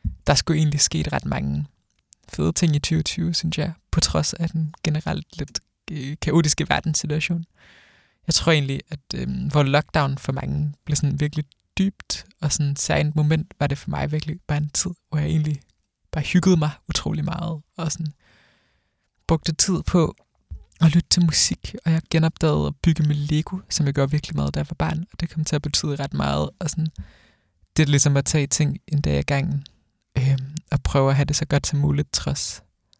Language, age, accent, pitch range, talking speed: Danish, 20-39, native, 135-160 Hz, 200 wpm